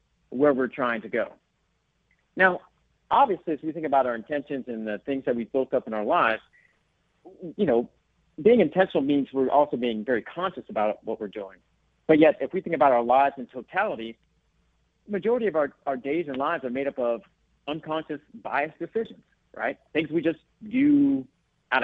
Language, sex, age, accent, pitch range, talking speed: English, male, 50-69, American, 130-175 Hz, 185 wpm